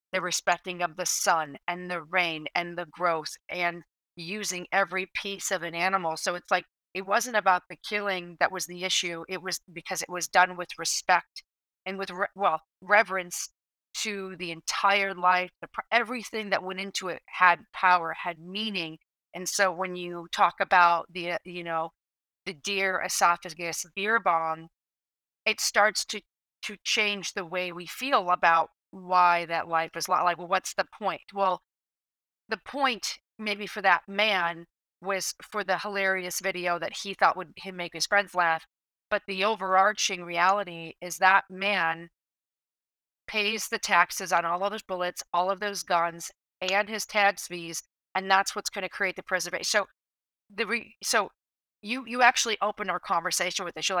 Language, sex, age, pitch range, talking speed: English, female, 40-59, 175-200 Hz, 170 wpm